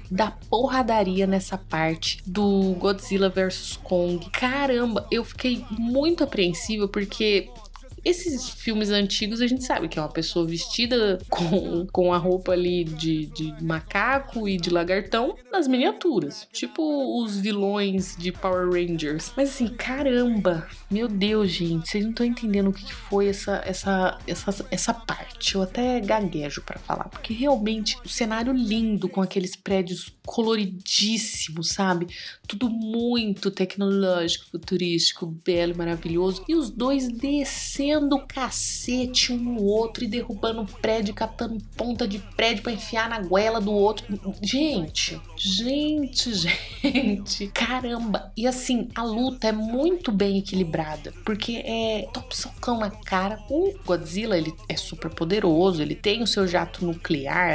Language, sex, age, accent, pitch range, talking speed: Portuguese, female, 20-39, Brazilian, 185-235 Hz, 140 wpm